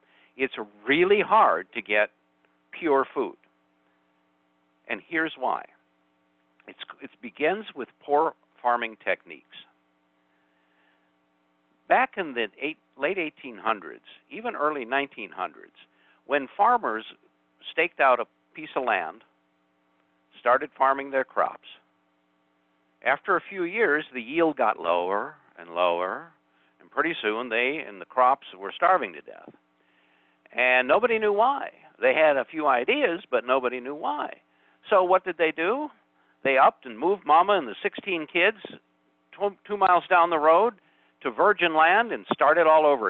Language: English